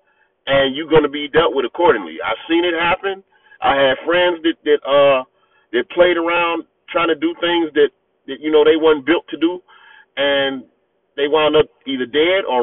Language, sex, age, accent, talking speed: English, male, 40-59, American, 195 wpm